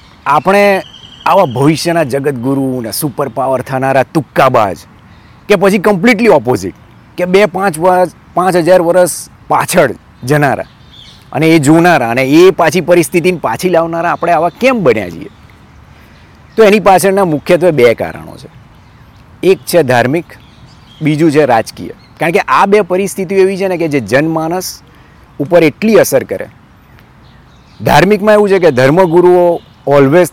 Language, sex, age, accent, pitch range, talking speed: Gujarati, male, 40-59, native, 135-180 Hz, 135 wpm